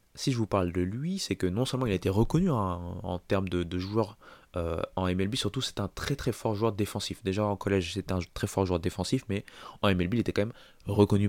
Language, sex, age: French, male, 20-39